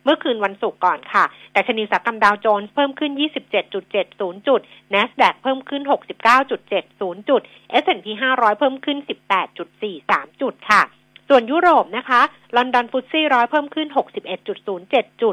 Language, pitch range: Thai, 200-270 Hz